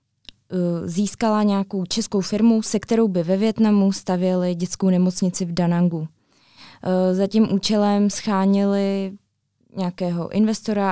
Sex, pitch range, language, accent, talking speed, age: female, 180-200 Hz, Czech, native, 110 wpm, 20-39